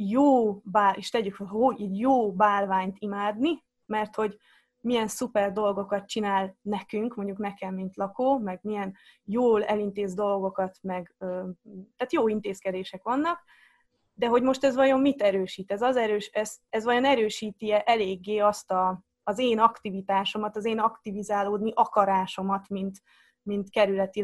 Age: 20-39